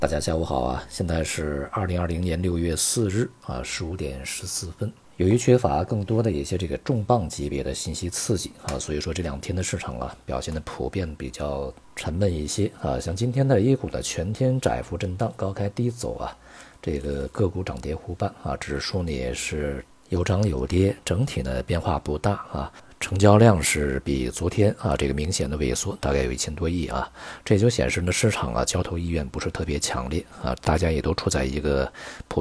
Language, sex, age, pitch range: Chinese, male, 50-69, 70-100 Hz